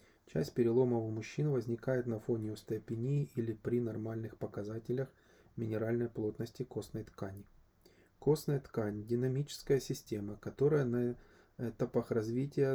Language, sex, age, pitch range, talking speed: Ukrainian, male, 20-39, 110-130 Hz, 120 wpm